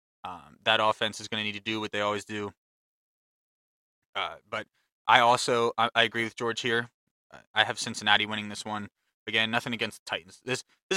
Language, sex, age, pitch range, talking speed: English, male, 20-39, 105-115 Hz, 200 wpm